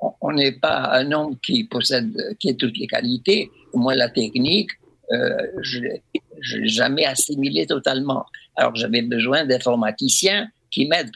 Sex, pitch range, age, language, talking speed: male, 130-210 Hz, 60-79, English, 150 wpm